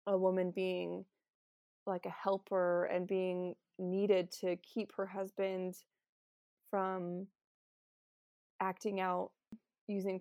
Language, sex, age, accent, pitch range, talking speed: English, female, 20-39, American, 180-205 Hz, 100 wpm